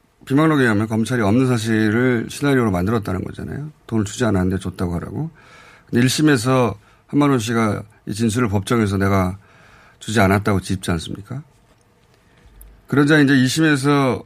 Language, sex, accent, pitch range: Korean, male, native, 100-145 Hz